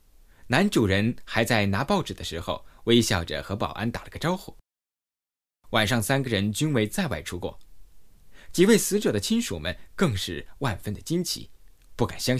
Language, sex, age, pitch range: Chinese, male, 20-39, 90-135 Hz